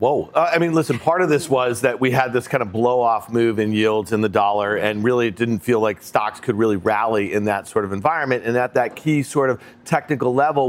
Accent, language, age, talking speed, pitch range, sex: American, English, 40-59, 260 wpm, 120-155 Hz, male